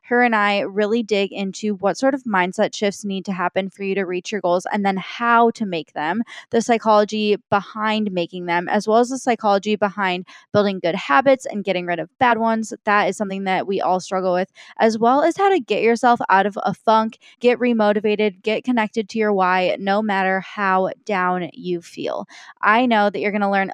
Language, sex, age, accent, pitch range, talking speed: English, female, 20-39, American, 195-230 Hz, 215 wpm